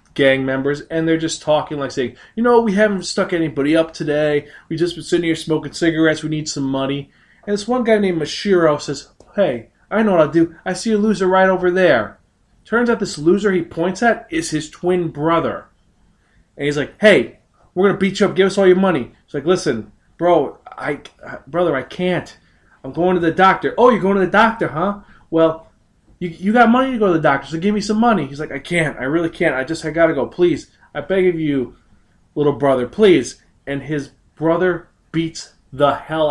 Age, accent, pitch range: 20-39, American, 135-180 Hz